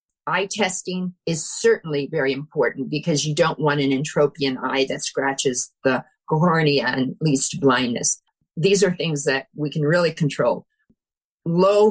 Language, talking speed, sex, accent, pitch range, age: English, 150 wpm, female, American, 145-205 Hz, 50-69